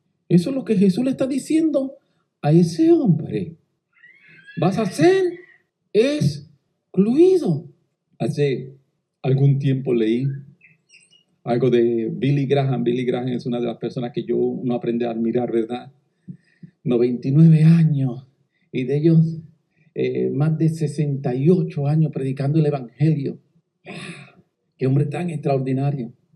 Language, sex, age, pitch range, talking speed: English, male, 50-69, 140-195 Hz, 125 wpm